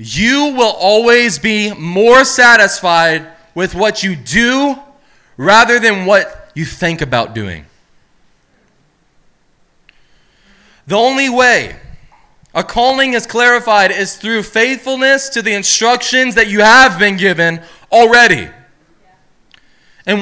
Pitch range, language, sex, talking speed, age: 205-250 Hz, English, male, 110 wpm, 20-39